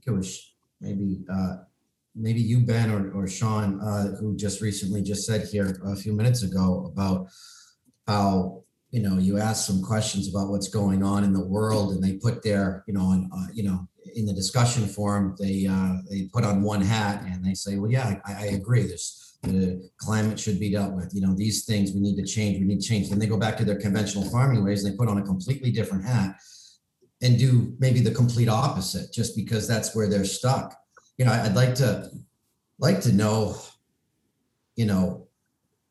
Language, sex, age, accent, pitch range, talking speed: English, male, 40-59, American, 100-130 Hz, 205 wpm